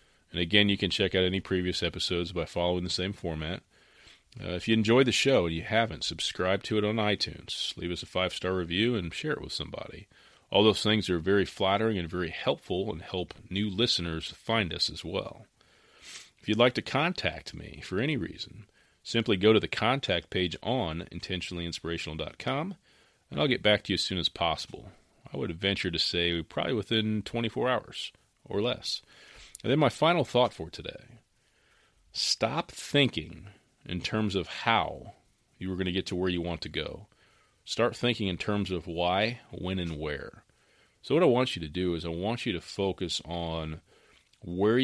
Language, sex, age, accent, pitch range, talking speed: English, male, 40-59, American, 85-105 Hz, 190 wpm